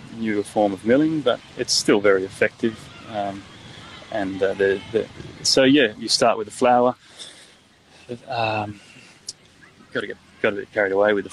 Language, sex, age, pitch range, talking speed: English, male, 20-39, 110-125 Hz, 170 wpm